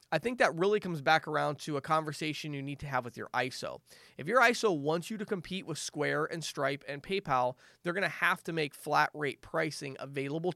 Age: 30-49